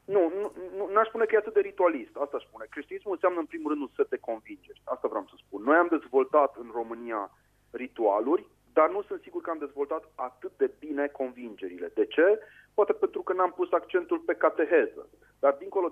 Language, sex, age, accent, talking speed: Romanian, male, 30-49, native, 200 wpm